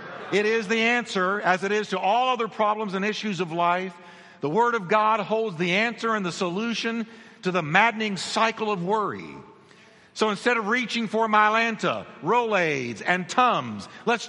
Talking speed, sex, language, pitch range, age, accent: 170 wpm, male, English, 185-230 Hz, 50-69, American